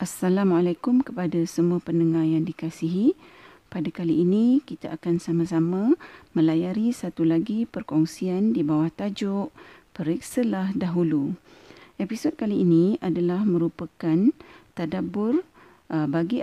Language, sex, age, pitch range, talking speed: Malay, female, 40-59, 165-225 Hz, 100 wpm